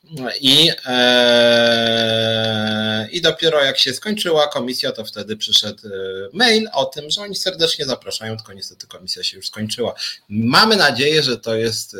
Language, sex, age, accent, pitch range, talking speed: Polish, male, 30-49, native, 105-135 Hz, 145 wpm